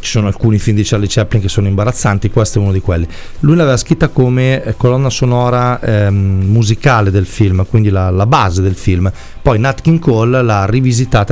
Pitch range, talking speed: 105-130 Hz, 195 wpm